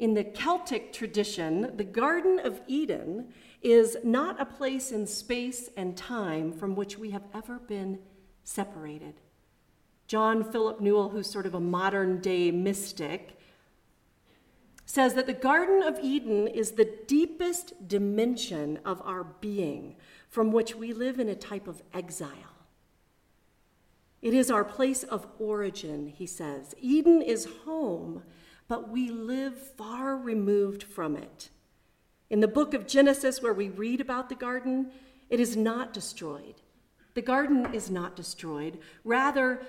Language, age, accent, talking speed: English, 50-69, American, 140 wpm